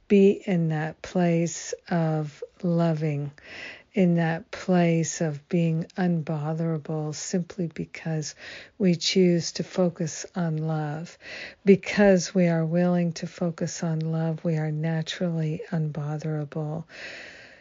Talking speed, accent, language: 110 wpm, American, English